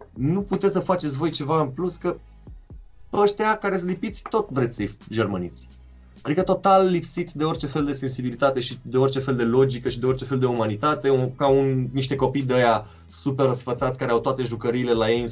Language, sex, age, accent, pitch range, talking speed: Romanian, male, 20-39, native, 110-150 Hz, 205 wpm